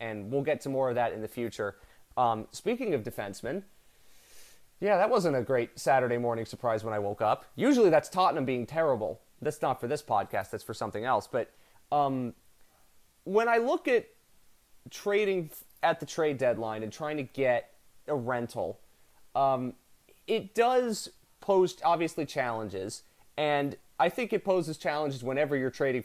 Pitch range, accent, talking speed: 120-160 Hz, American, 165 wpm